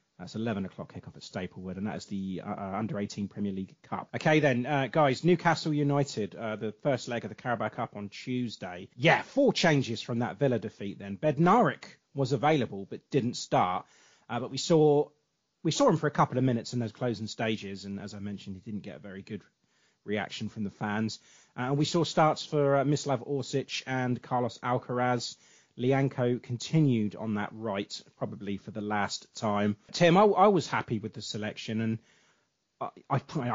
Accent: British